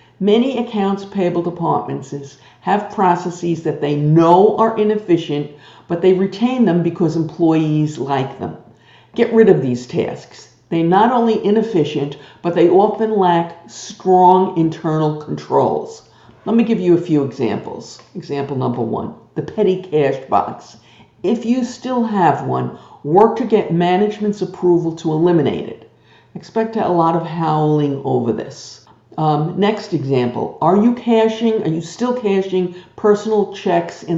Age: 50-69